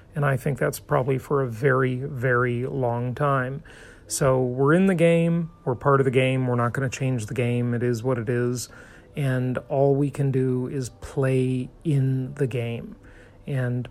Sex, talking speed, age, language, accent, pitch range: male, 190 wpm, 40-59, English, American, 130-160 Hz